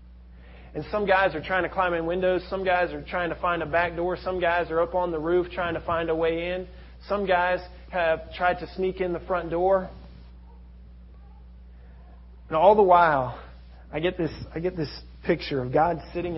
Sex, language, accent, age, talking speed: male, English, American, 30-49, 200 wpm